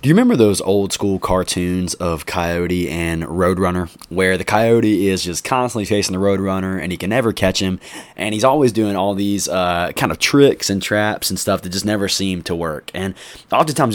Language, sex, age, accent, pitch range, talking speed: English, male, 20-39, American, 90-110 Hz, 205 wpm